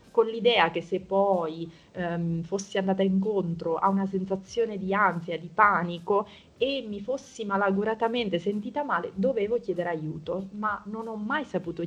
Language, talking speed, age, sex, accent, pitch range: Italian, 145 wpm, 30-49, female, native, 180-220 Hz